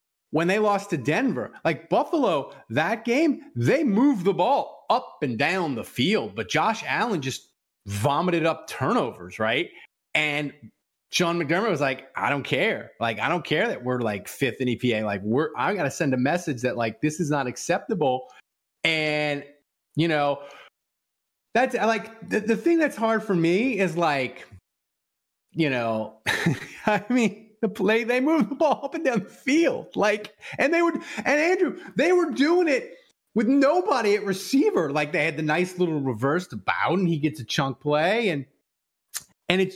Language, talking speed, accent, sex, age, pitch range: English, 180 wpm, American, male, 30-49, 140-225 Hz